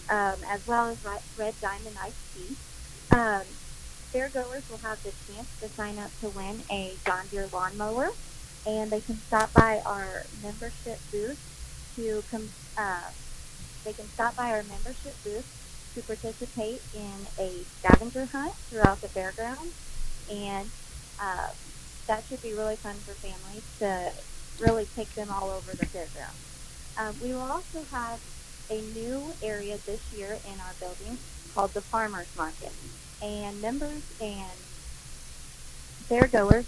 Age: 30-49